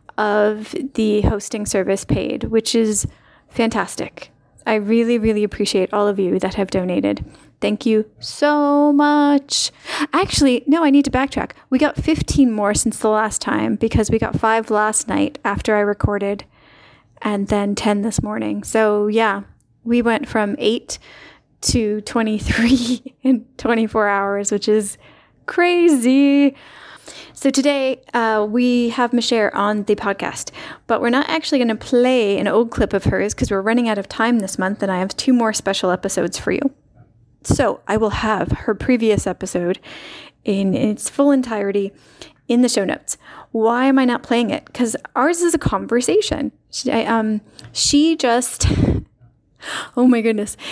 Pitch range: 210-260 Hz